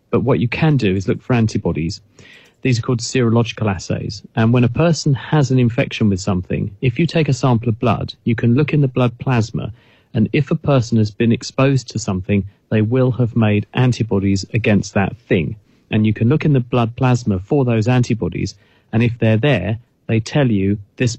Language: English